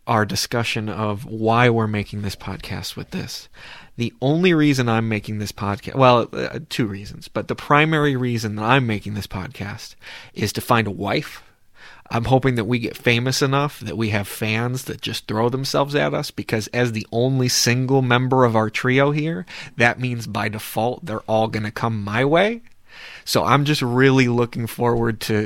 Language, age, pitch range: English, 30-49, 110-130 Hz